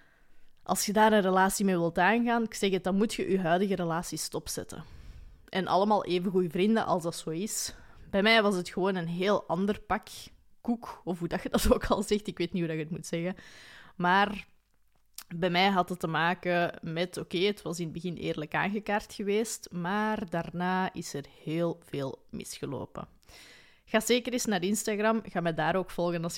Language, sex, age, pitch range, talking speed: Dutch, female, 20-39, 175-210 Hz, 205 wpm